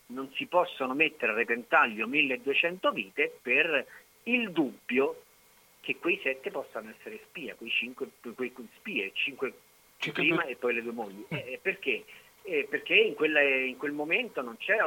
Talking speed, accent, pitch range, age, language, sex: 160 wpm, native, 130-165 Hz, 50-69, Italian, male